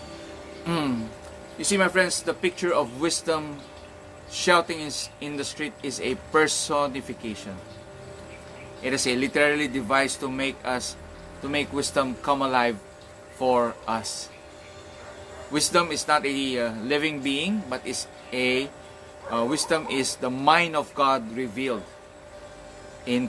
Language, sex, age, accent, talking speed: English, male, 20-39, Filipino, 130 wpm